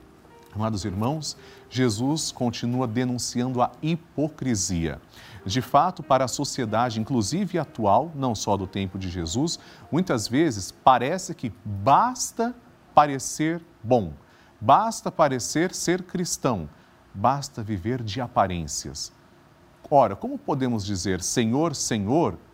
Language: Portuguese